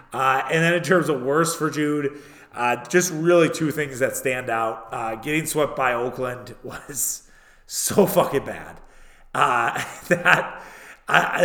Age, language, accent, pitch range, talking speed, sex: 30-49, English, American, 125-150 Hz, 140 wpm, male